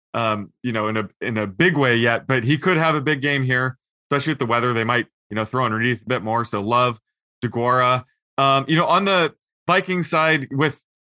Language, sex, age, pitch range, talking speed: English, male, 20-39, 115-140 Hz, 225 wpm